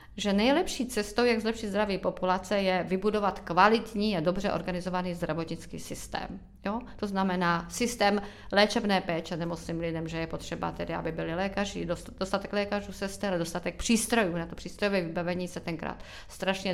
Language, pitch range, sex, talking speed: Czech, 165-200 Hz, female, 160 wpm